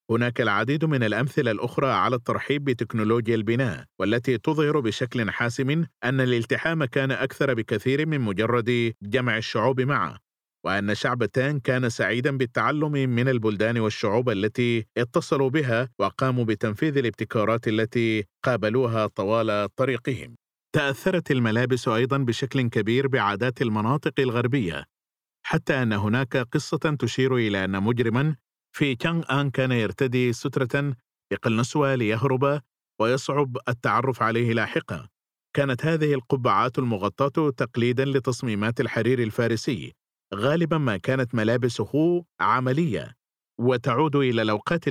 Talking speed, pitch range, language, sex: 115 wpm, 115-140 Hz, Arabic, male